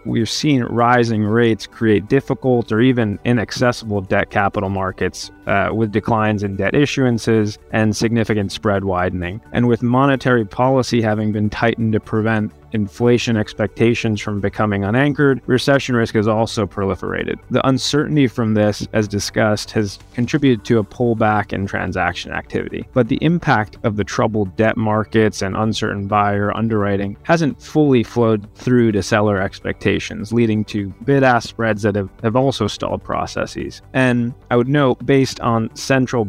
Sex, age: male, 20-39